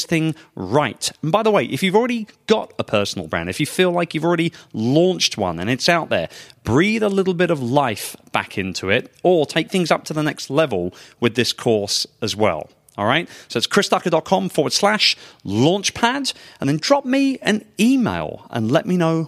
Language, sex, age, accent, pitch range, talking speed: English, male, 30-49, British, 115-180 Hz, 200 wpm